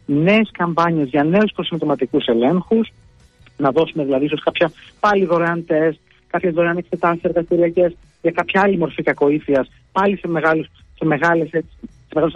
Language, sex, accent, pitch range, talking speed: Greek, male, native, 145-195 Hz, 135 wpm